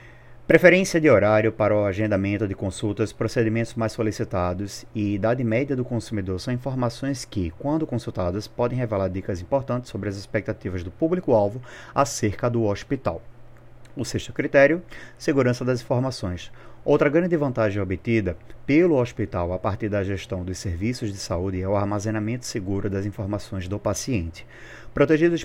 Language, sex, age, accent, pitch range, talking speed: Portuguese, male, 30-49, Brazilian, 100-130 Hz, 145 wpm